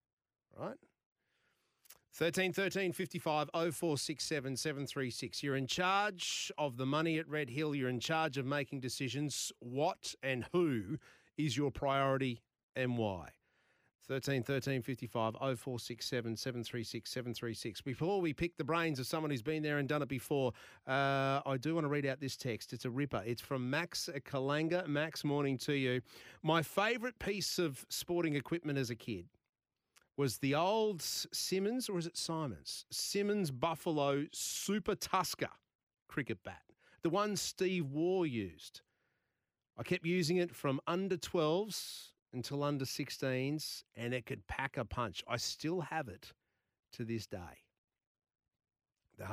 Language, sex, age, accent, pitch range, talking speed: English, male, 40-59, Australian, 120-160 Hz, 165 wpm